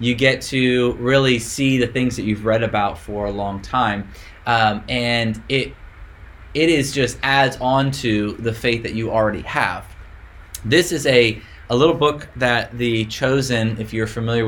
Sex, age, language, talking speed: male, 20-39, English, 175 wpm